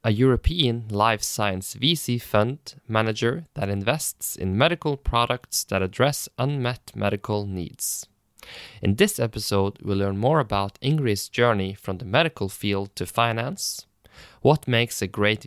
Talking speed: 140 wpm